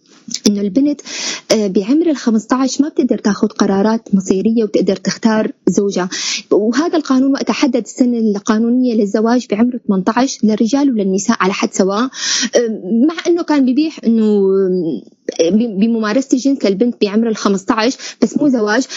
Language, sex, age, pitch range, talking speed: Arabic, female, 20-39, 200-255 Hz, 125 wpm